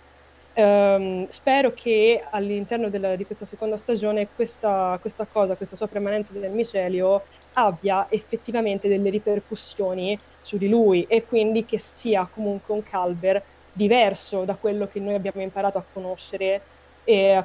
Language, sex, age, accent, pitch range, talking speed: Italian, female, 20-39, native, 195-230 Hz, 140 wpm